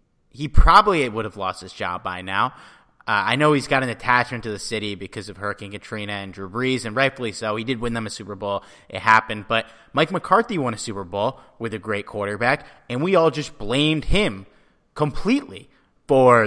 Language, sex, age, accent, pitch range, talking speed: English, male, 30-49, American, 110-160 Hz, 210 wpm